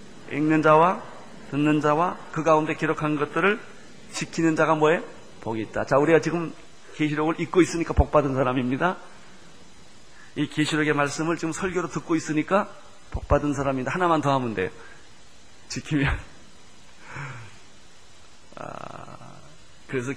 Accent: native